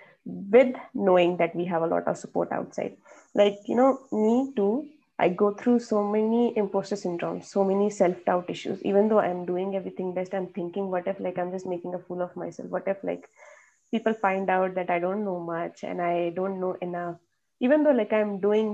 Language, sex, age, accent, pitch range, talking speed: English, female, 20-39, Indian, 185-220 Hz, 210 wpm